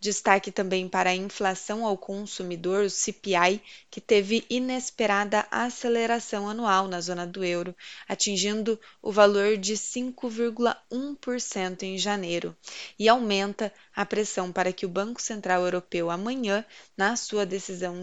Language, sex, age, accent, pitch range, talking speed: Portuguese, female, 20-39, Brazilian, 185-215 Hz, 130 wpm